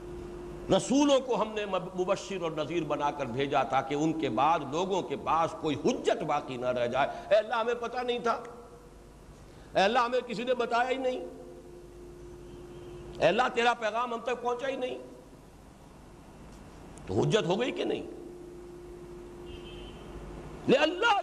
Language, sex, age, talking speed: Urdu, male, 60-79, 155 wpm